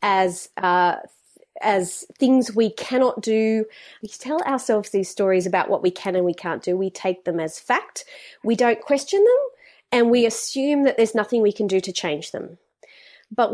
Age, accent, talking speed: 30-49, Australian, 185 wpm